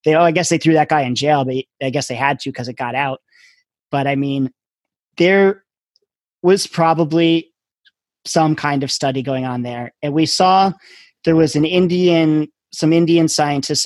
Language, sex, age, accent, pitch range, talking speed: English, male, 30-49, American, 135-165 Hz, 185 wpm